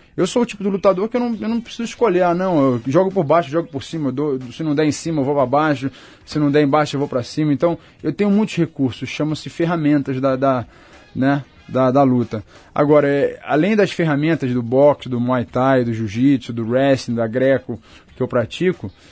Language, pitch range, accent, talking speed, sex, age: Portuguese, 125-165 Hz, Brazilian, 220 wpm, male, 20-39